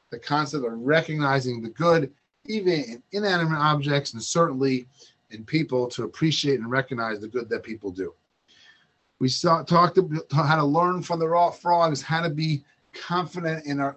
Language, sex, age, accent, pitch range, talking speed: English, male, 30-49, American, 125-165 Hz, 170 wpm